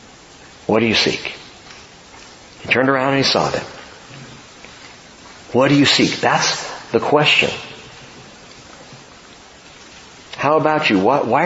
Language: English